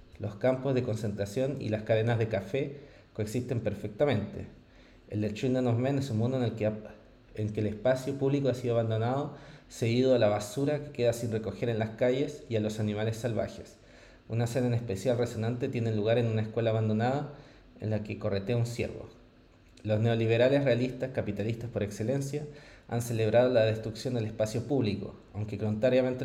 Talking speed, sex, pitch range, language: 180 wpm, male, 110-125 Hz, Spanish